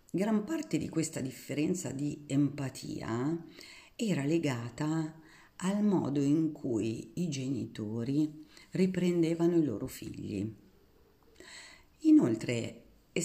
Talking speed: 95 wpm